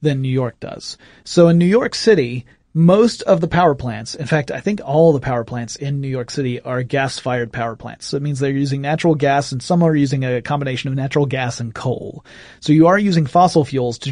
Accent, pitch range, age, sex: American, 130-165 Hz, 30-49, male